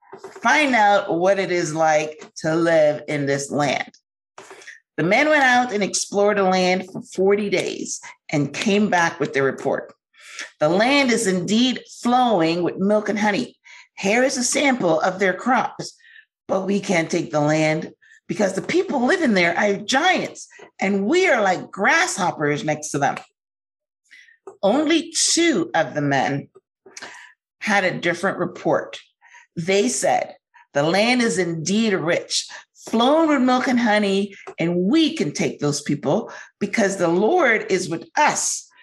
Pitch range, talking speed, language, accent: 170-275 Hz, 150 wpm, English, American